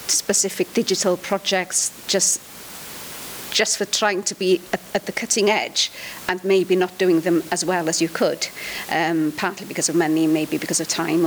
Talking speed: 175 wpm